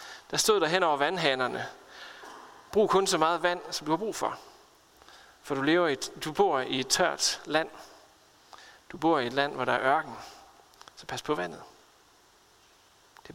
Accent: native